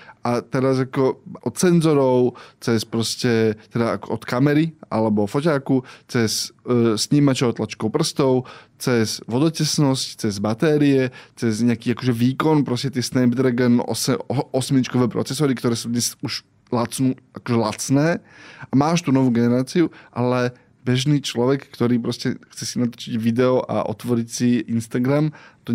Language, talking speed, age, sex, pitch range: Slovak, 130 wpm, 20-39, male, 115-135 Hz